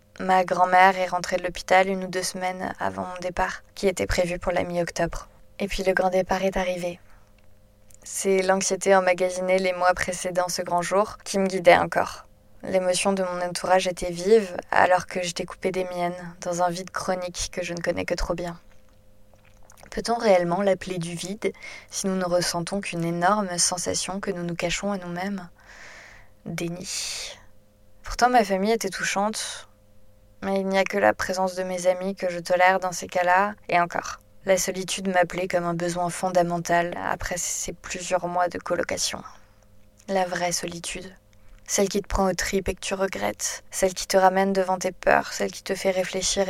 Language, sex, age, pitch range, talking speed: French, female, 20-39, 175-190 Hz, 185 wpm